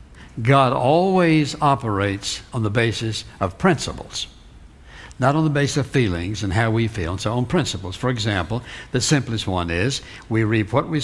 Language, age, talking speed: English, 60-79, 175 wpm